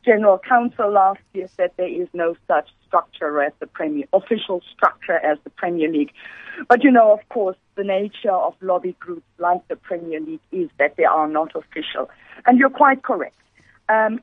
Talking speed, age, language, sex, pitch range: 185 wpm, 50-69, English, female, 180-235 Hz